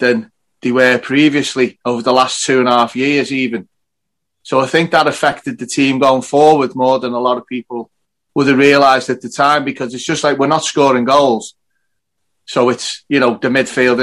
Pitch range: 125-150 Hz